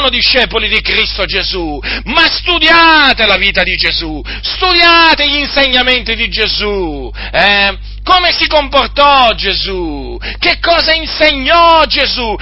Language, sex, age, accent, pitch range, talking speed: Italian, male, 40-59, native, 245-315 Hz, 120 wpm